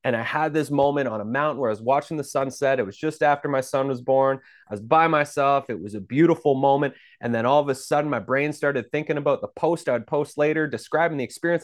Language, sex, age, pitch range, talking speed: English, male, 30-49, 120-150 Hz, 260 wpm